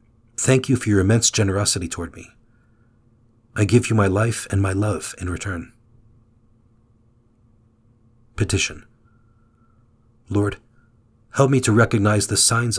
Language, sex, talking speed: English, male, 120 wpm